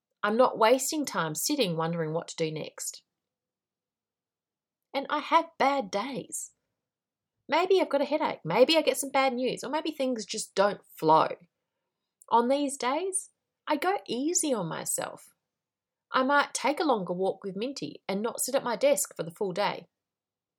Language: English